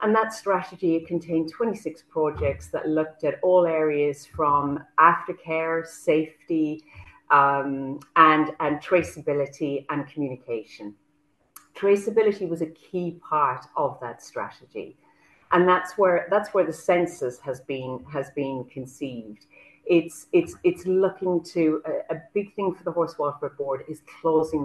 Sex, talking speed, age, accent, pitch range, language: female, 135 wpm, 40-59, British, 135-180 Hz, English